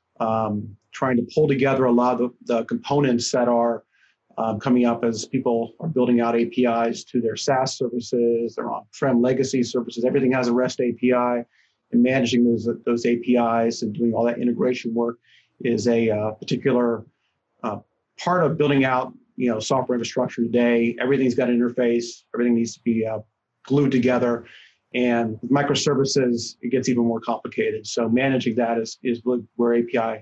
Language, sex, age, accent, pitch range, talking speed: English, male, 30-49, American, 115-125 Hz, 165 wpm